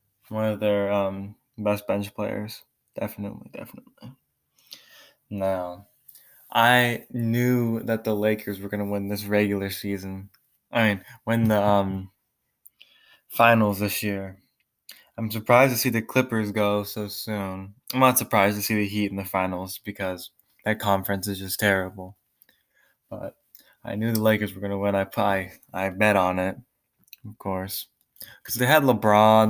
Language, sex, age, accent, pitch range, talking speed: English, male, 20-39, American, 100-110 Hz, 150 wpm